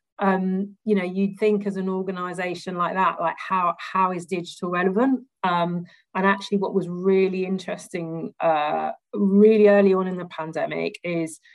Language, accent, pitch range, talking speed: English, British, 170-200 Hz, 165 wpm